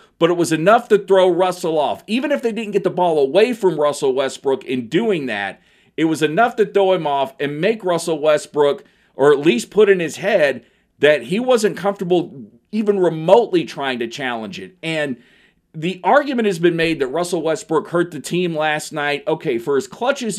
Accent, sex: American, male